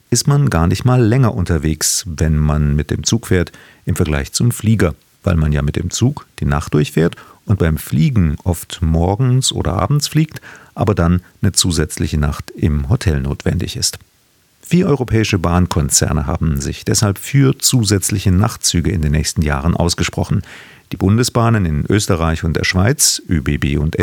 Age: 40-59